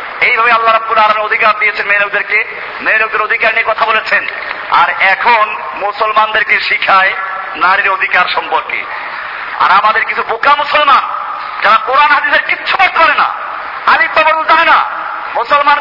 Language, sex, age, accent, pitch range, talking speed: Bengali, male, 50-69, native, 250-310 Hz, 95 wpm